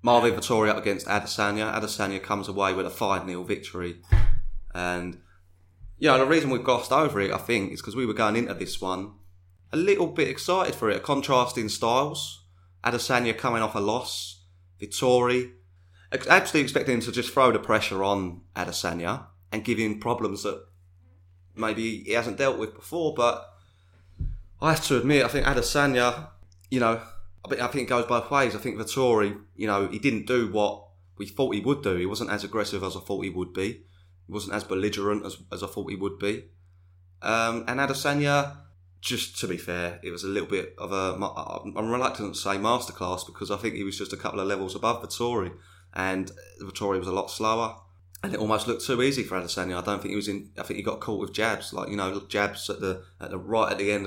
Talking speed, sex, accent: 205 wpm, male, British